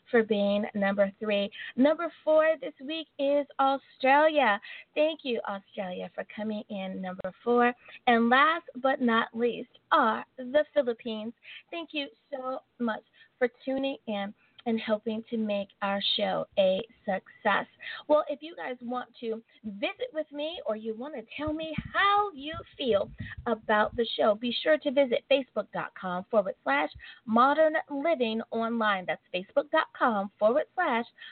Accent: American